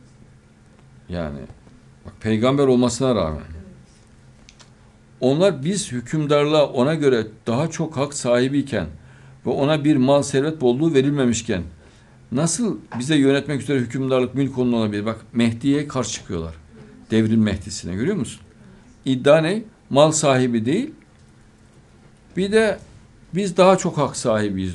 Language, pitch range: Turkish, 110-145 Hz